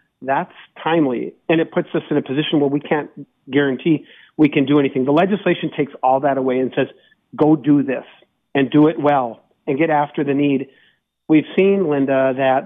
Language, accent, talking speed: English, American, 195 wpm